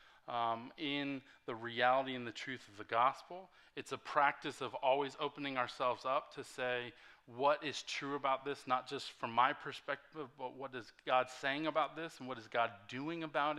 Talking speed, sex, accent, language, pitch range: 190 wpm, male, American, English, 120-145 Hz